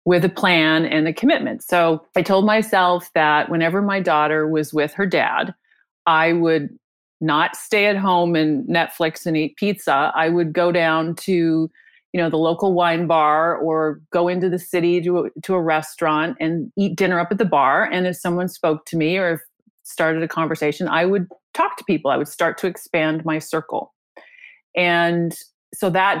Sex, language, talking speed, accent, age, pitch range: female, English, 190 wpm, American, 30-49, 165-215 Hz